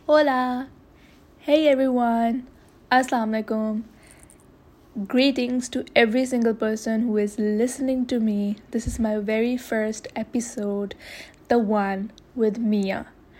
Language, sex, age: Urdu, female, 10-29